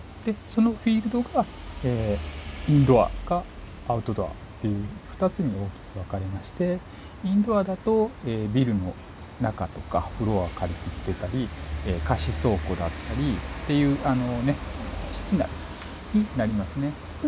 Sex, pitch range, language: male, 95-140 Hz, Japanese